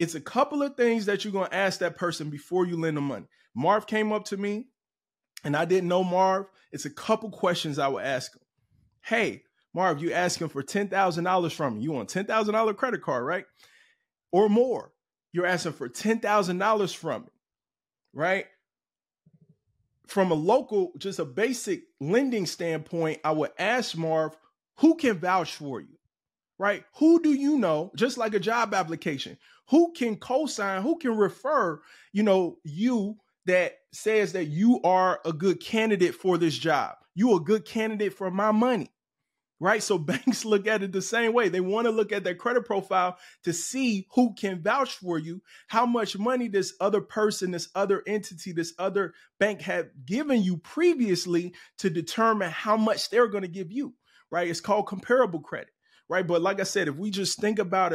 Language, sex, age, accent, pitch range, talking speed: English, male, 20-39, American, 175-225 Hz, 190 wpm